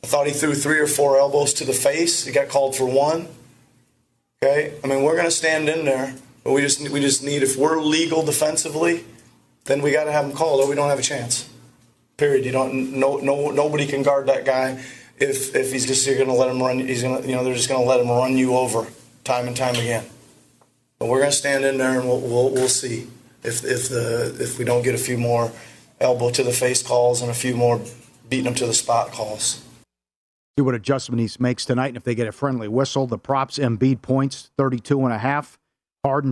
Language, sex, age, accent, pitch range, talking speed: English, male, 30-49, American, 120-140 Hz, 240 wpm